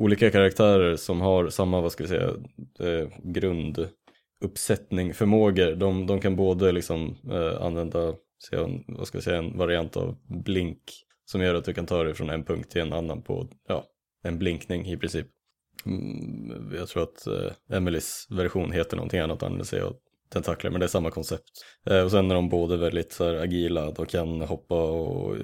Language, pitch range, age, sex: English, 85-95 Hz, 20-39, male